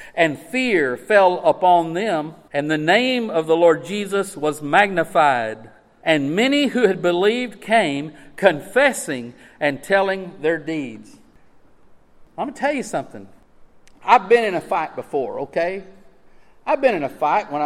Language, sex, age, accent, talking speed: English, male, 50-69, American, 150 wpm